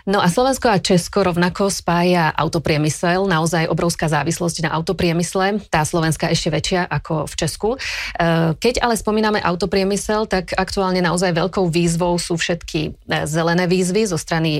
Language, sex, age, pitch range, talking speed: Slovak, female, 30-49, 165-190 Hz, 145 wpm